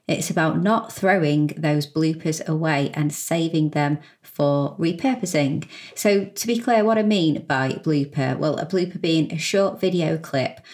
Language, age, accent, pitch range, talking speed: English, 30-49, British, 145-170 Hz, 160 wpm